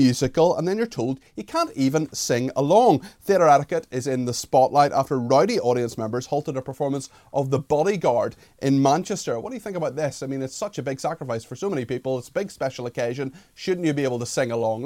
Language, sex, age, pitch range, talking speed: English, male, 30-49, 125-155 Hz, 230 wpm